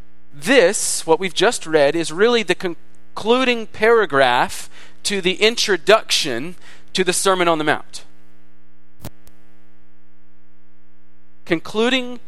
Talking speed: 100 wpm